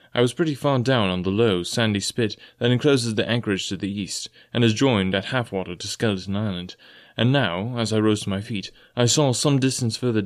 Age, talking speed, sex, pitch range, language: 20-39, 220 wpm, male, 100-125 Hz, English